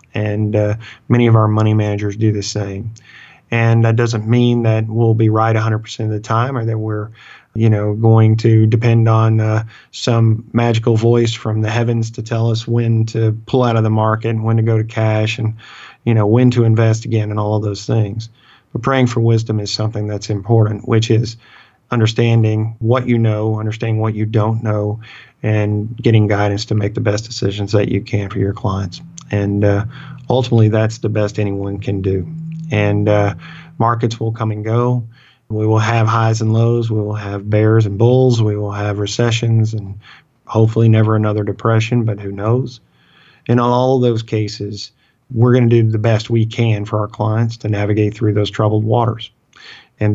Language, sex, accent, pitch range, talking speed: English, male, American, 105-115 Hz, 195 wpm